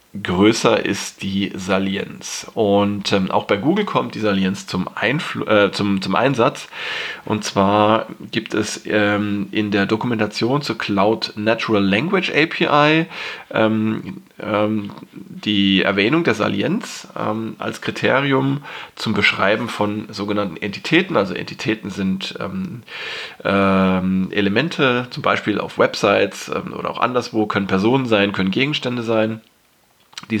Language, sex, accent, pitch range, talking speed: German, male, German, 100-115 Hz, 125 wpm